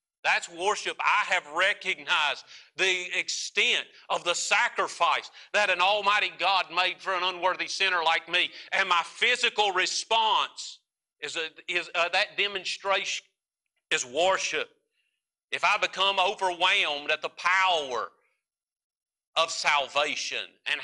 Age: 40-59